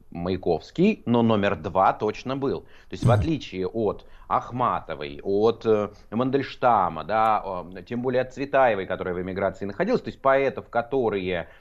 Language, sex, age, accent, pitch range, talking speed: Russian, male, 30-49, native, 90-125 Hz, 140 wpm